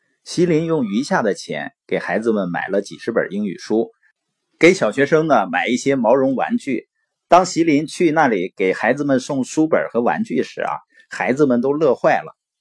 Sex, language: male, Chinese